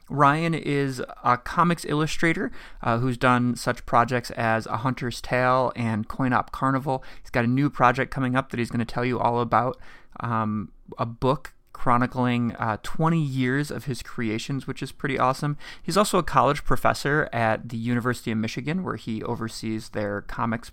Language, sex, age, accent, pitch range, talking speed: English, male, 30-49, American, 120-150 Hz, 175 wpm